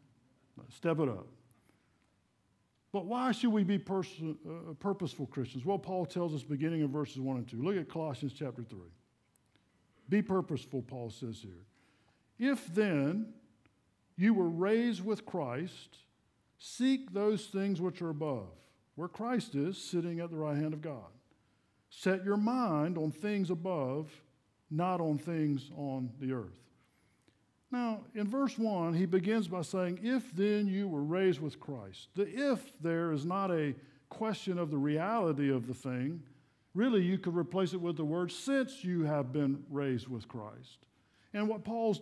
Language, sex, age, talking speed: English, male, 50-69, 160 wpm